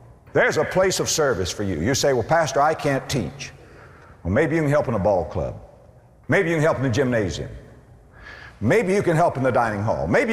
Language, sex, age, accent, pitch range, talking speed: English, male, 60-79, American, 100-160 Hz, 225 wpm